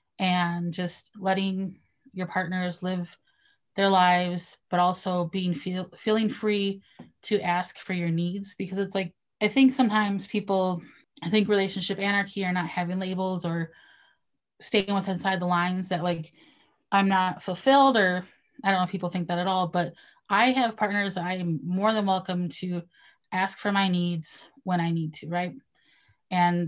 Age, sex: 20-39, female